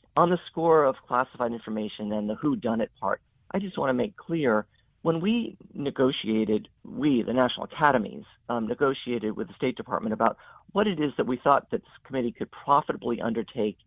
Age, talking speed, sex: 50-69, 175 wpm, male